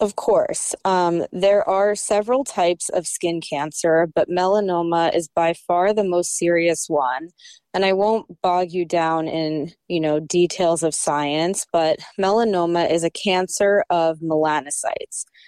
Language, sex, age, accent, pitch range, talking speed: English, female, 20-39, American, 165-190 Hz, 145 wpm